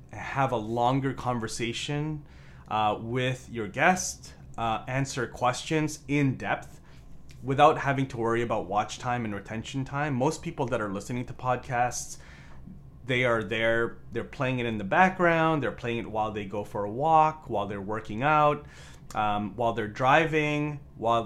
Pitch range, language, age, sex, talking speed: 110-140 Hz, English, 30-49, male, 160 wpm